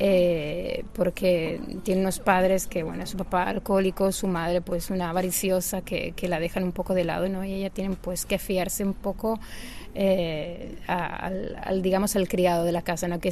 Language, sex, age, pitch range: Chinese, female, 30-49, 180-195 Hz